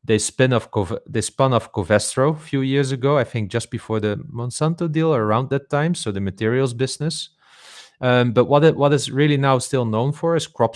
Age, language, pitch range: 30-49, English, 100-130 Hz